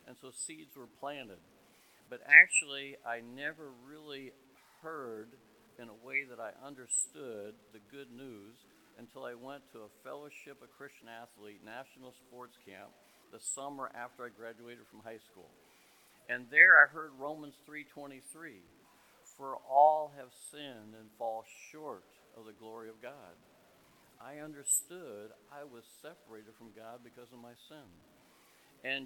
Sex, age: male, 60-79